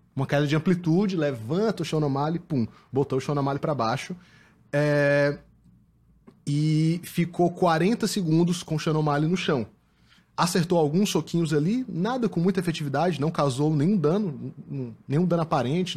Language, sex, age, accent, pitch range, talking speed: Portuguese, male, 20-39, Brazilian, 150-185 Hz, 145 wpm